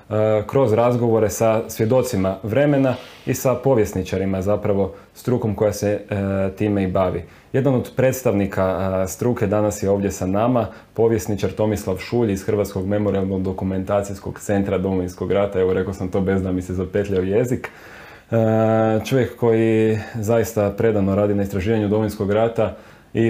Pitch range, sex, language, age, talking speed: 100-110 Hz, male, Croatian, 20-39, 140 wpm